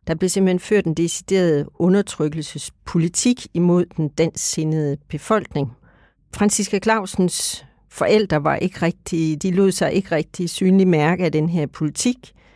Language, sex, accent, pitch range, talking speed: Danish, female, native, 155-195 Hz, 135 wpm